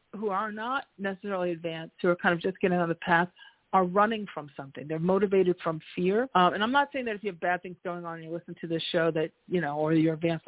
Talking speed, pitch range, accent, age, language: 270 wpm, 165-200 Hz, American, 40-59, English